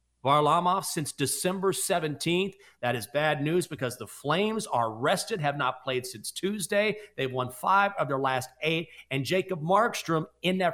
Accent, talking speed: American, 170 wpm